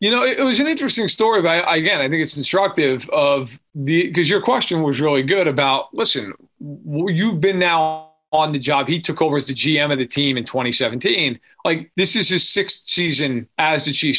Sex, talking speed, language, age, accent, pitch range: male, 210 wpm, English, 40-59, American, 140-180 Hz